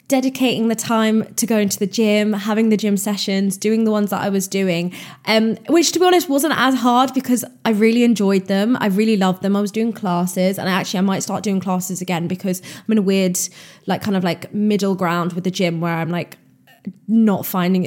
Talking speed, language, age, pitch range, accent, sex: 225 wpm, English, 20-39, 180-210 Hz, British, female